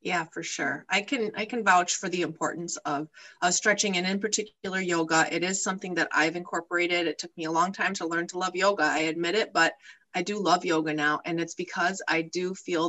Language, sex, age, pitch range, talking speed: English, female, 30-49, 170-220 Hz, 235 wpm